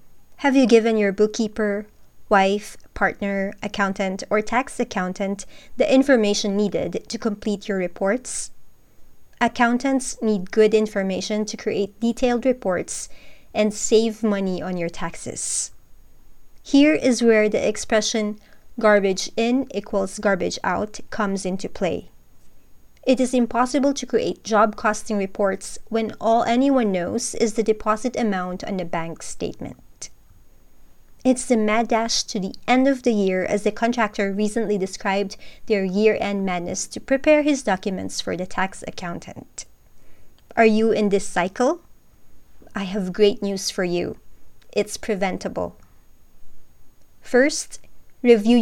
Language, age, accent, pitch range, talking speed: English, 20-39, Filipino, 200-235 Hz, 130 wpm